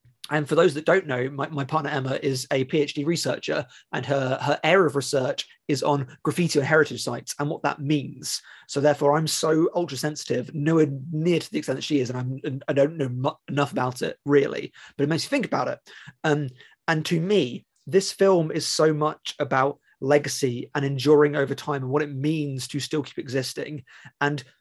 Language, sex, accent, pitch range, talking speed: English, male, British, 140-155 Hz, 205 wpm